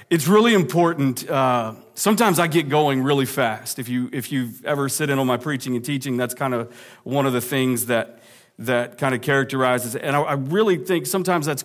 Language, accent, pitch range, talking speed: English, American, 120-150 Hz, 215 wpm